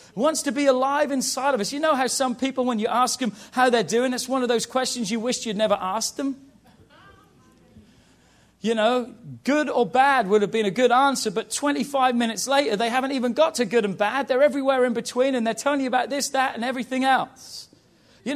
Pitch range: 205-275 Hz